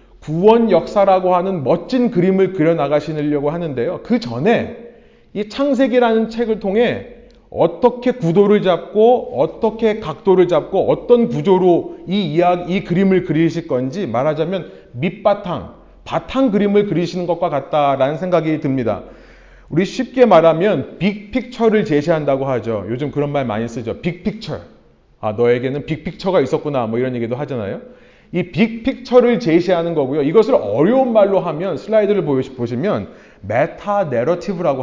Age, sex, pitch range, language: 30-49, male, 145-220 Hz, Korean